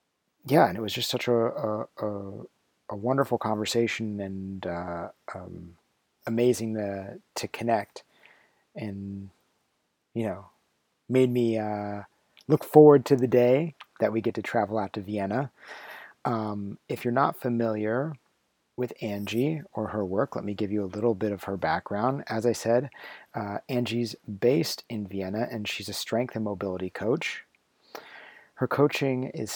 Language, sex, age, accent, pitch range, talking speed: English, male, 30-49, American, 105-130 Hz, 155 wpm